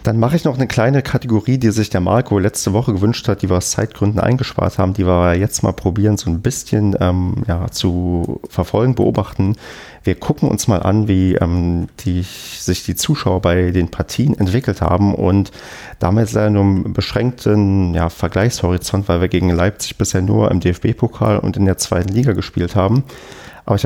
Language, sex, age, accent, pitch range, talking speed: German, male, 30-49, German, 90-110 Hz, 180 wpm